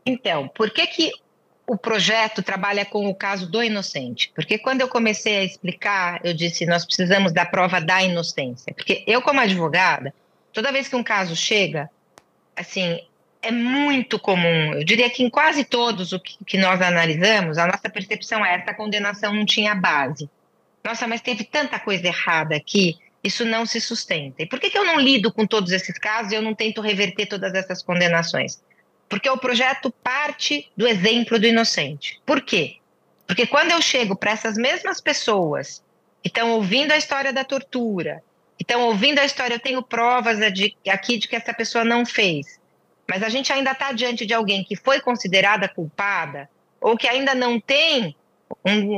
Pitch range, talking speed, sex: 190-250 Hz, 185 wpm, female